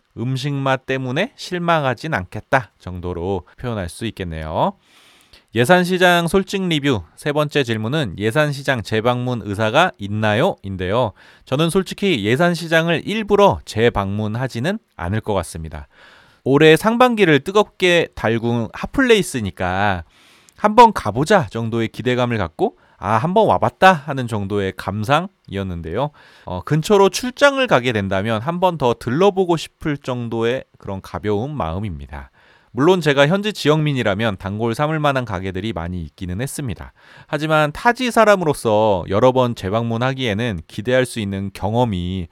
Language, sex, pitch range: Korean, male, 100-160 Hz